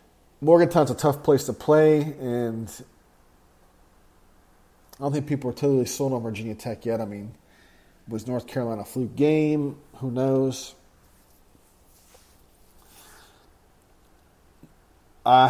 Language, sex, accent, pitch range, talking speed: English, male, American, 105-140 Hz, 110 wpm